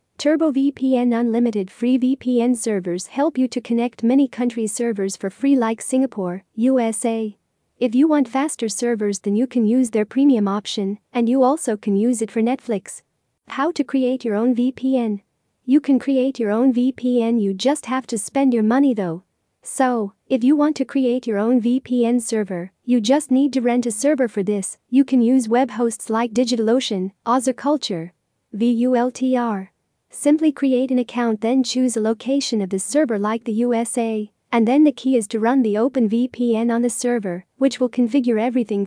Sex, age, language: female, 40-59, English